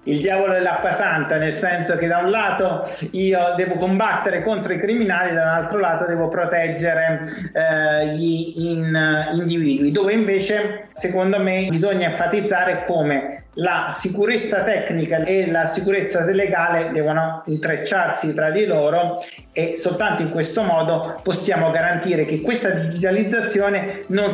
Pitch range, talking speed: 155-190 Hz, 130 wpm